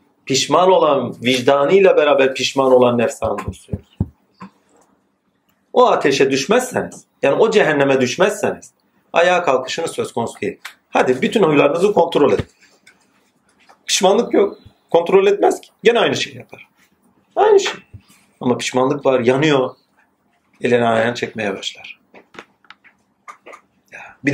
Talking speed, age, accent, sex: 110 wpm, 40-59, native, male